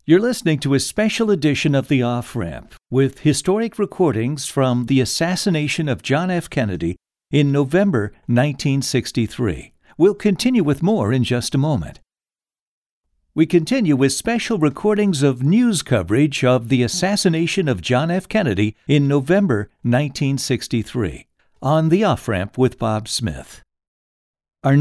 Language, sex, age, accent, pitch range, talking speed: English, male, 60-79, American, 115-165 Hz, 135 wpm